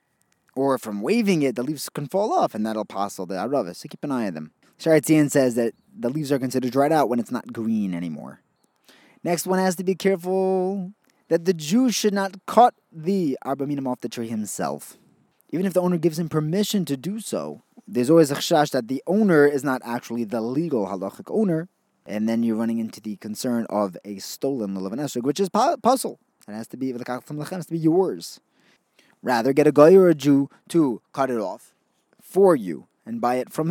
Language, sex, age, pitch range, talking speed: English, male, 20-39, 120-180 Hz, 200 wpm